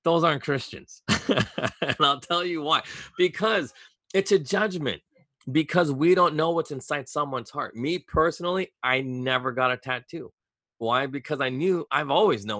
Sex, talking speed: male, 160 wpm